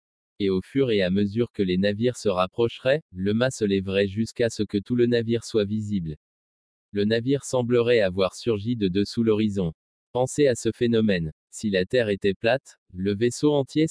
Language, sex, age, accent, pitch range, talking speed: French, male, 20-39, French, 100-120 Hz, 185 wpm